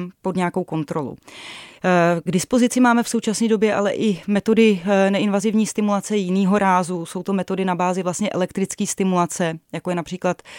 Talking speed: 155 wpm